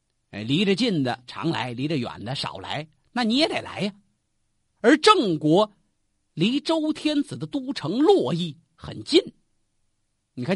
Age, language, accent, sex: 50-69, Chinese, native, male